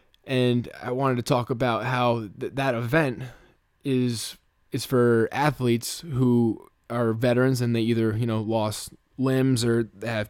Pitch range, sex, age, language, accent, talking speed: 115-130 Hz, male, 20-39, English, American, 155 wpm